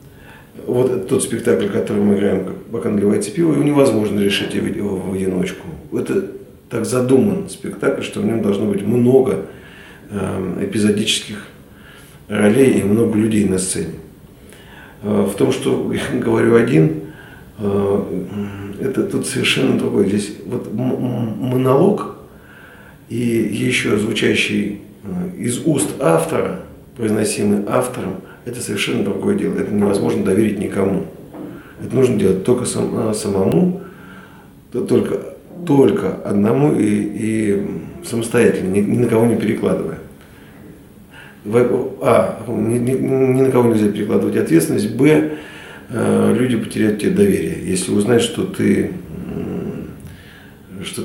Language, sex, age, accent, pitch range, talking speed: Russian, male, 40-59, native, 95-115 Hz, 115 wpm